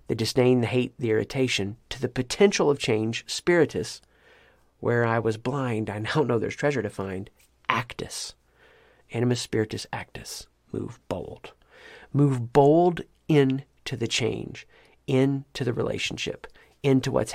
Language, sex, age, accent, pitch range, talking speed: English, male, 40-59, American, 85-130 Hz, 140 wpm